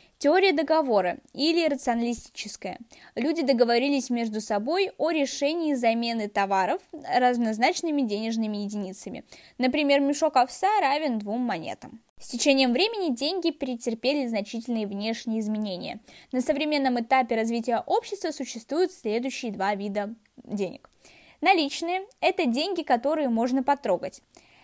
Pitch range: 230-315 Hz